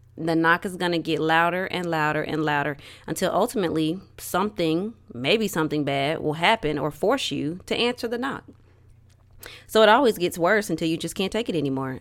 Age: 20-39